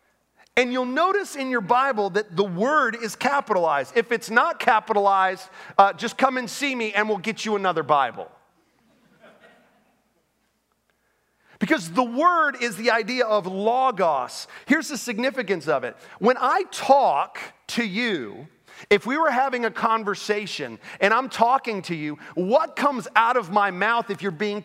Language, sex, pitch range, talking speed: English, male, 200-250 Hz, 160 wpm